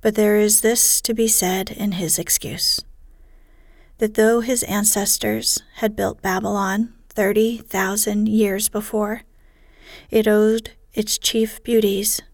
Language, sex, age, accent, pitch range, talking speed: English, female, 40-59, American, 205-225 Hz, 120 wpm